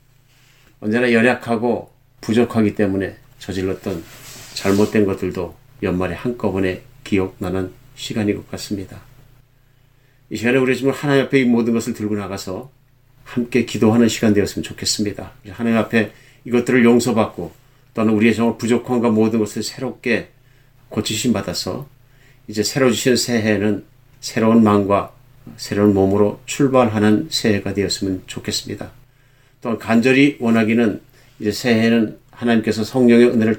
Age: 40-59